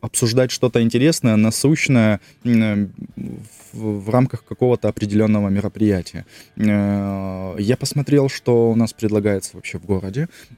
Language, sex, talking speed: Russian, male, 110 wpm